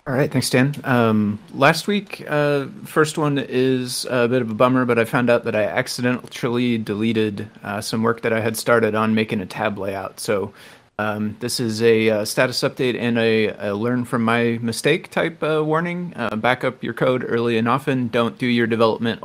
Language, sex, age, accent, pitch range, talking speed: English, male, 30-49, American, 110-135 Hz, 205 wpm